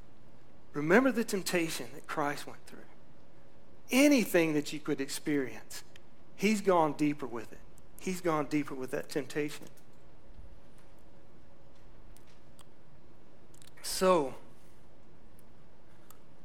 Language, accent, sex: English, American, male